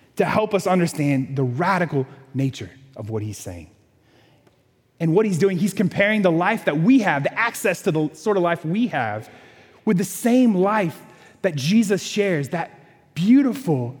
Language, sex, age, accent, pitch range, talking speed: English, male, 30-49, American, 135-205 Hz, 170 wpm